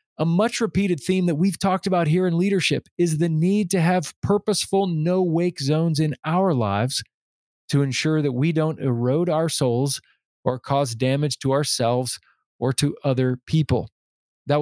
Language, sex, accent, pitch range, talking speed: English, male, American, 130-170 Hz, 165 wpm